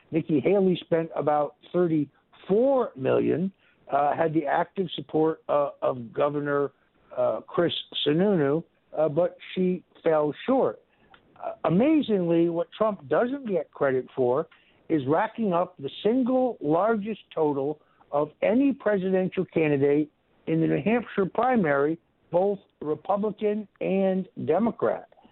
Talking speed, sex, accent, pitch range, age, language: 120 wpm, male, American, 160-205 Hz, 60-79, English